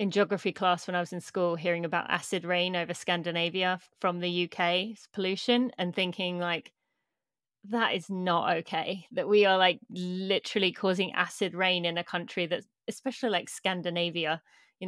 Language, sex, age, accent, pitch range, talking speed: English, female, 30-49, British, 175-215 Hz, 165 wpm